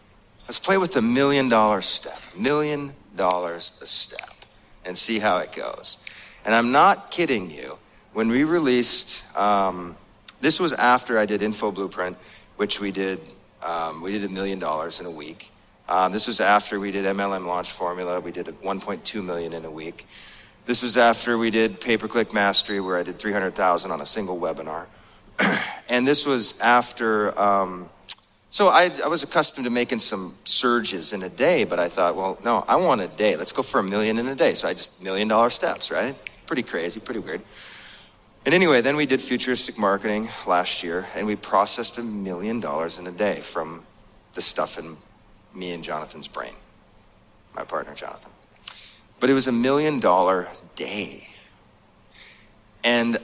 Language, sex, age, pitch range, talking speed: English, male, 40-59, 95-120 Hz, 175 wpm